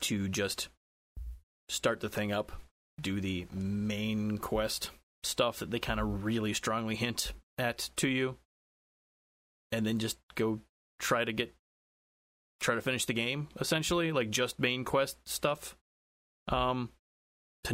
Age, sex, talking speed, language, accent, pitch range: 20-39, male, 140 wpm, English, American, 75-125 Hz